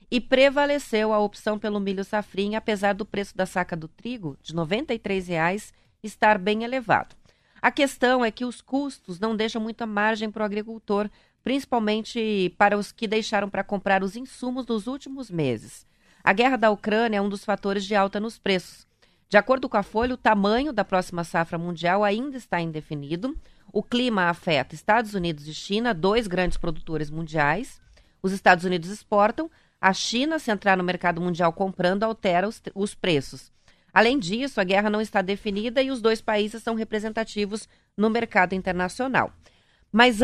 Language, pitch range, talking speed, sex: Portuguese, 180-225 Hz, 170 wpm, female